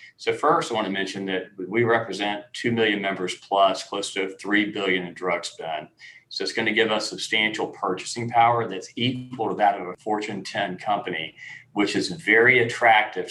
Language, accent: English, American